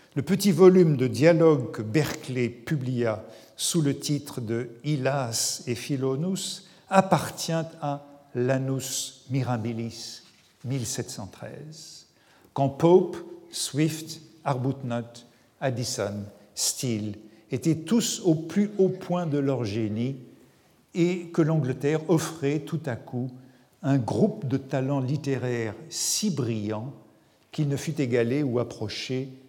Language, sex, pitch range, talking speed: French, male, 120-165 Hz, 110 wpm